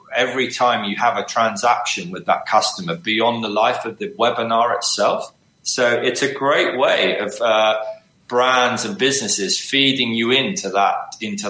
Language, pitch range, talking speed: English, 110-130 Hz, 160 wpm